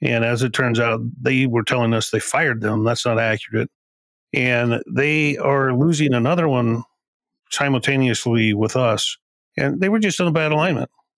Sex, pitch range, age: male, 110-130 Hz, 40-59